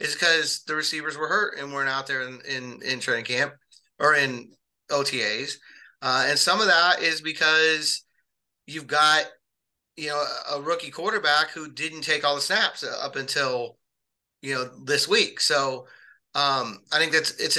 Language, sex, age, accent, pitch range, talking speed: English, male, 30-49, American, 135-160 Hz, 165 wpm